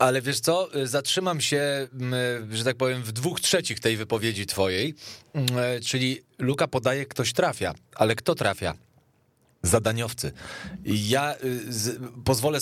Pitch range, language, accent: 115-135 Hz, Polish, native